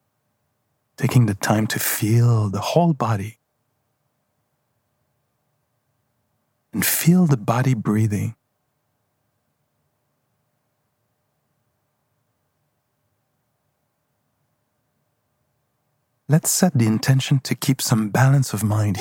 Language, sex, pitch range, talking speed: English, male, 120-145 Hz, 75 wpm